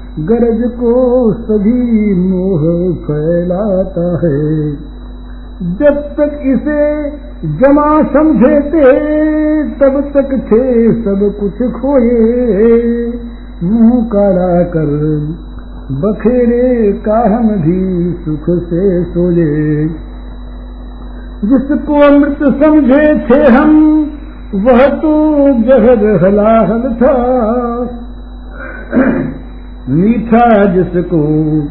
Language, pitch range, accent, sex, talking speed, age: Hindi, 180-275 Hz, native, male, 70 wpm, 50-69